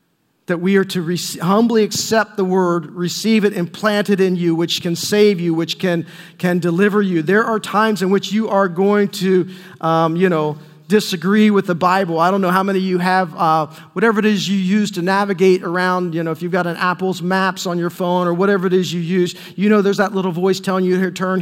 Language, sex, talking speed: English, male, 235 wpm